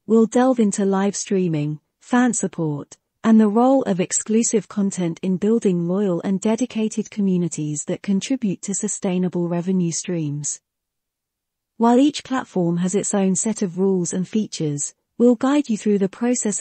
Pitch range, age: 175-225 Hz, 40-59